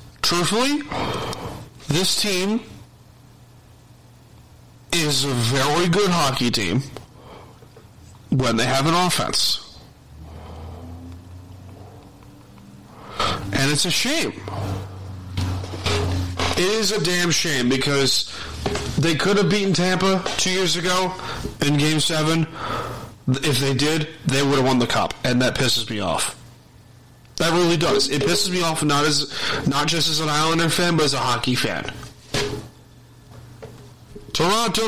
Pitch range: 120-170 Hz